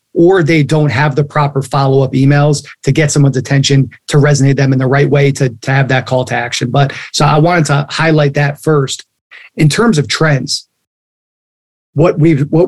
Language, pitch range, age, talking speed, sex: English, 135-155 Hz, 30-49, 195 wpm, male